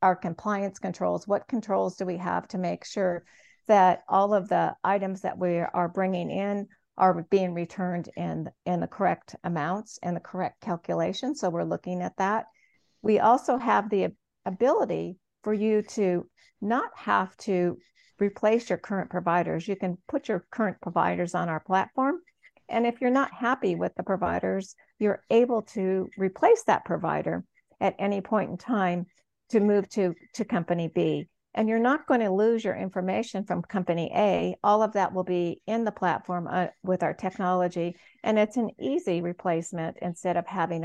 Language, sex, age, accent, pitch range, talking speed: English, female, 50-69, American, 175-210 Hz, 175 wpm